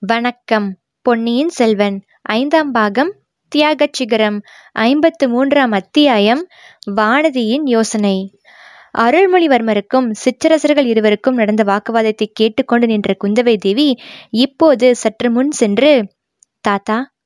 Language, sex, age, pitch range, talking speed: Tamil, female, 20-39, 210-240 Hz, 90 wpm